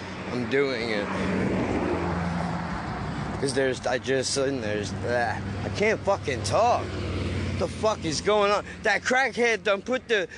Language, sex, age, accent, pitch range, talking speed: English, male, 20-39, American, 140-220 Hz, 145 wpm